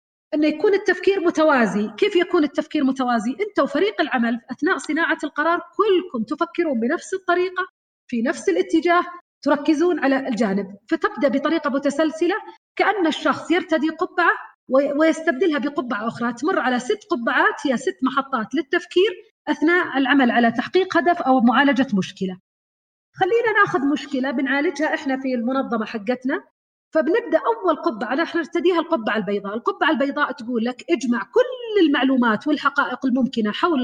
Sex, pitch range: female, 255-345 Hz